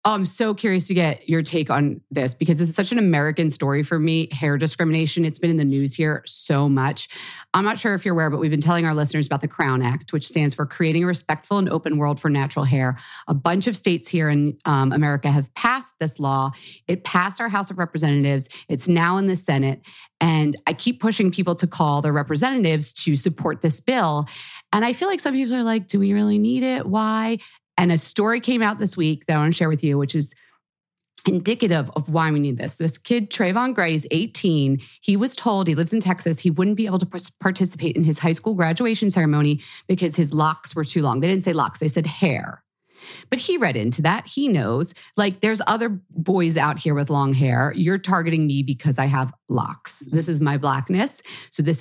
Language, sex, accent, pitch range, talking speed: English, female, American, 150-195 Hz, 225 wpm